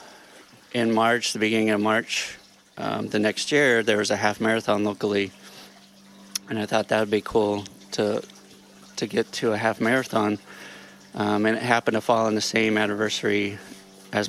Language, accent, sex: English, American, male